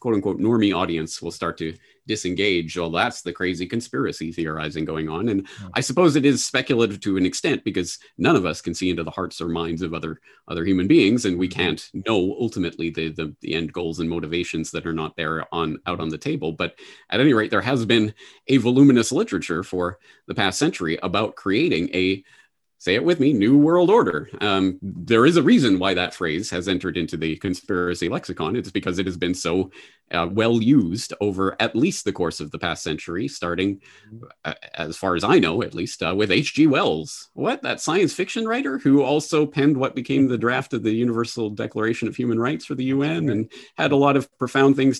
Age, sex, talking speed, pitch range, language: 30-49, male, 215 wpm, 85-130 Hz, English